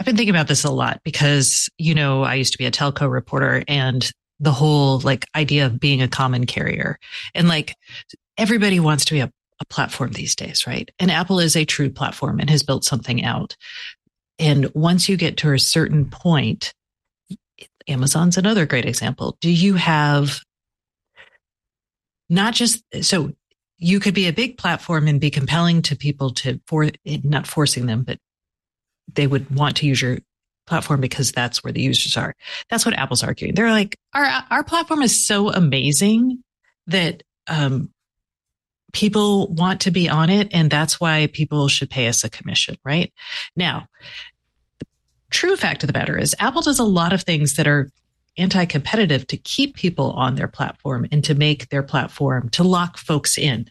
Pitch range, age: 135-185 Hz, 40-59